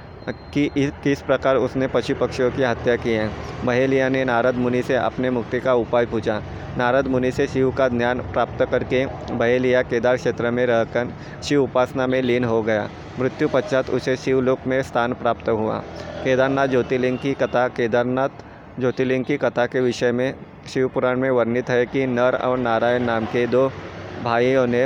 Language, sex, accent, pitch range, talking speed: Hindi, male, native, 120-130 Hz, 175 wpm